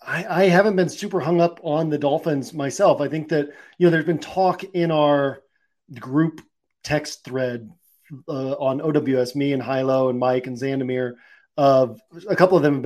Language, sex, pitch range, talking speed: English, male, 135-165 Hz, 185 wpm